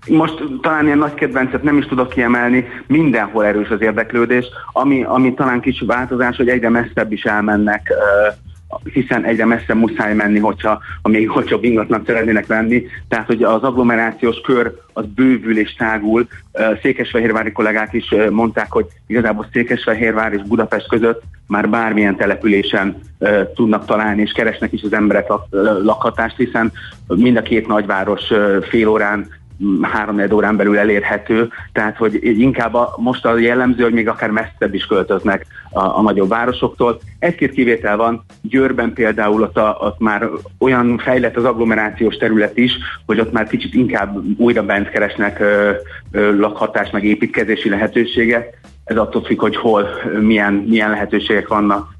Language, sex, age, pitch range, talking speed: Hungarian, male, 30-49, 105-120 Hz, 150 wpm